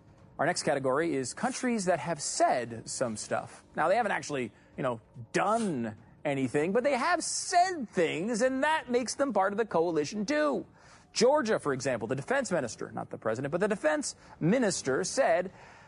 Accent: American